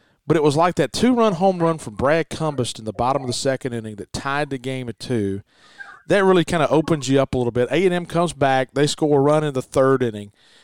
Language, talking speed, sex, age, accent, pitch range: English, 255 wpm, male, 40-59, American, 125-145 Hz